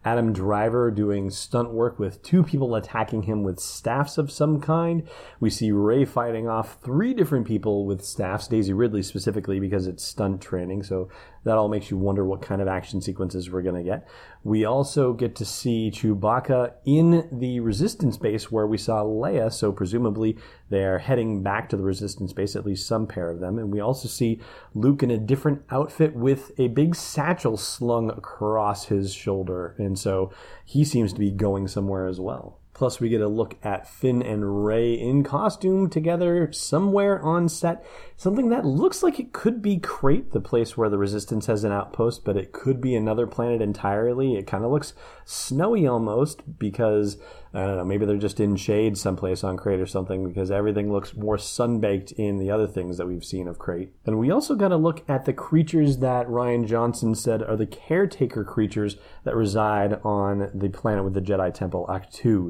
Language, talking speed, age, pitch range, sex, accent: English, 195 wpm, 30-49, 100-130 Hz, male, American